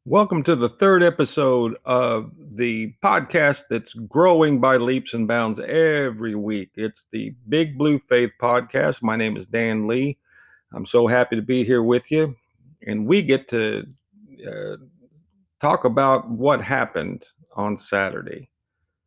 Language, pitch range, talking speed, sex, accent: English, 105-145 Hz, 145 wpm, male, American